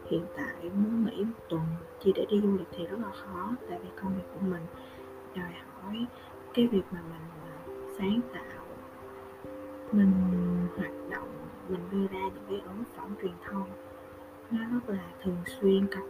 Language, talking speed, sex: Vietnamese, 175 wpm, female